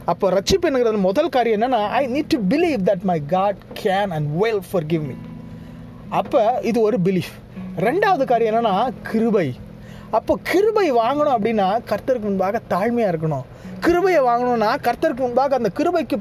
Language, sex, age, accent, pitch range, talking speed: Tamil, male, 30-49, native, 190-275 Hz, 150 wpm